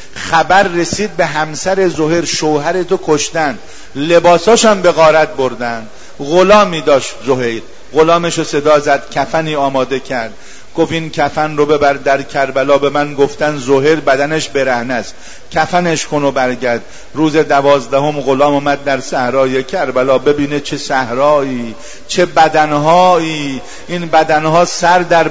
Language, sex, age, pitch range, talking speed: Persian, male, 50-69, 145-175 Hz, 130 wpm